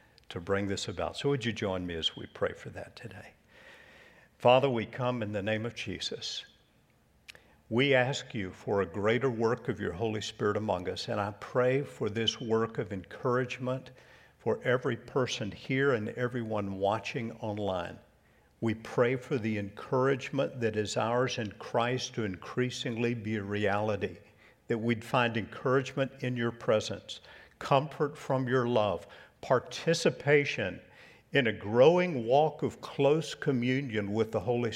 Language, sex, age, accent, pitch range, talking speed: English, male, 50-69, American, 105-130 Hz, 155 wpm